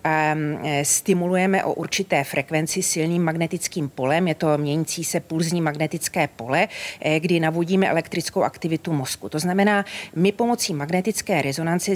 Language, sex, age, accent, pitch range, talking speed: Czech, female, 40-59, native, 160-190 Hz, 125 wpm